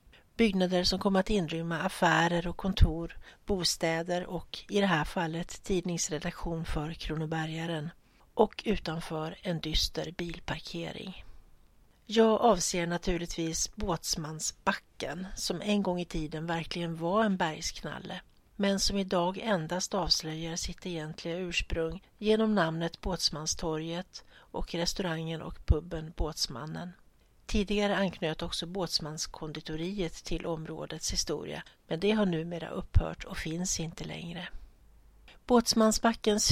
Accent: native